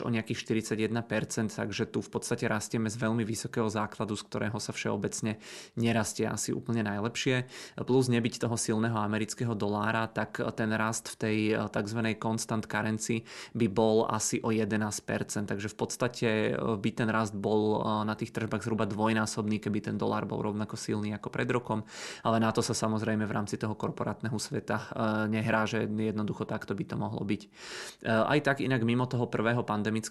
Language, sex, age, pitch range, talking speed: Czech, male, 20-39, 110-115 Hz, 170 wpm